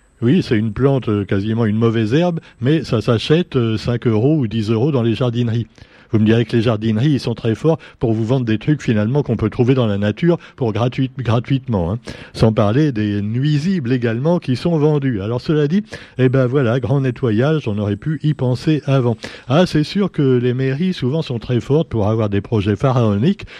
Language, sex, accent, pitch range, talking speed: French, male, French, 110-150 Hz, 210 wpm